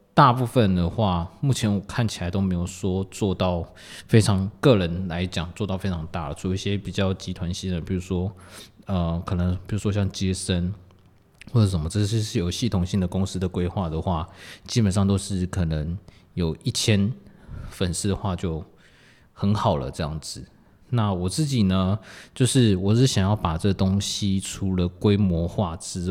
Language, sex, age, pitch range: Chinese, male, 20-39, 90-105 Hz